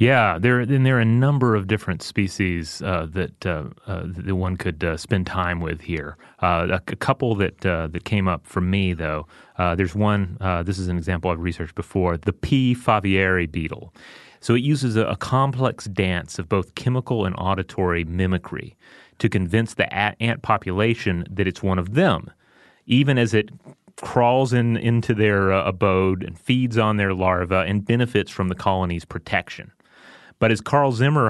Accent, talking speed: American, 185 wpm